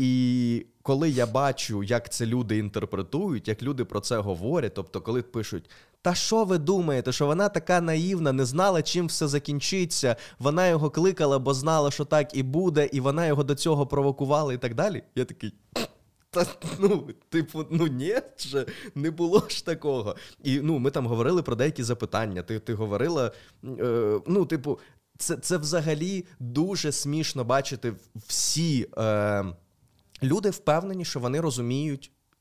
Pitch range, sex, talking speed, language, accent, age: 110-150 Hz, male, 155 wpm, Ukrainian, native, 20-39